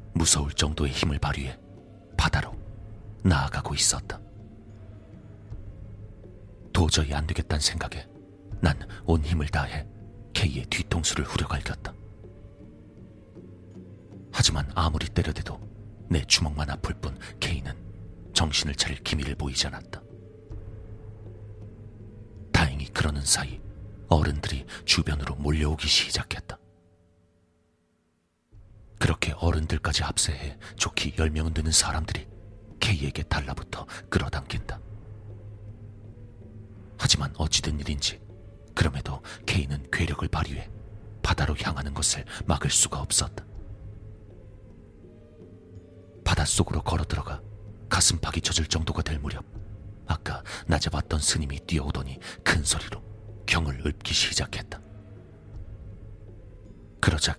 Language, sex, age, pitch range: Korean, male, 40-59, 80-105 Hz